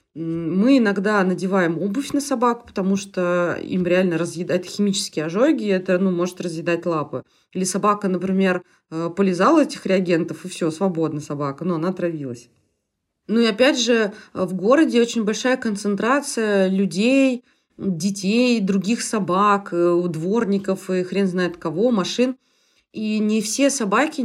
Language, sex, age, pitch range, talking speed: Russian, female, 20-39, 170-225 Hz, 135 wpm